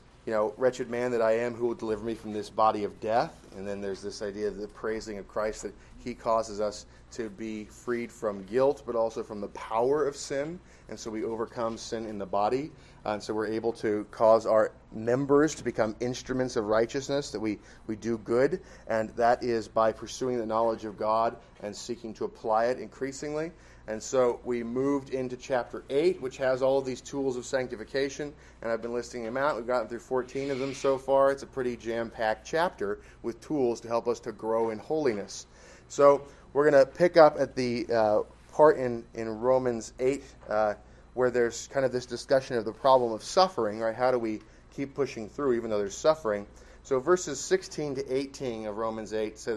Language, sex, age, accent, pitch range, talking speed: English, male, 30-49, American, 110-135 Hz, 205 wpm